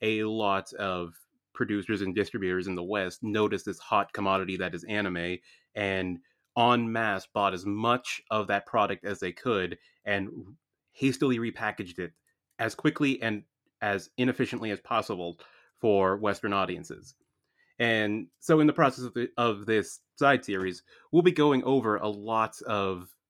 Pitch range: 100-125 Hz